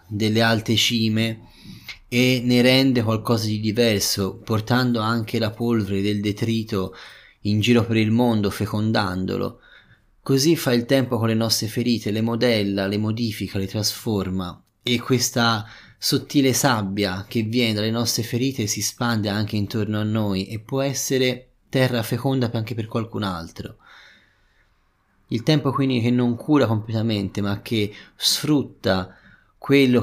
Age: 20-39